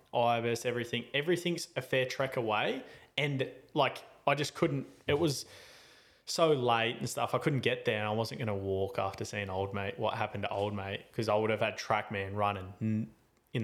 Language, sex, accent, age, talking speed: English, male, Australian, 20-39, 200 wpm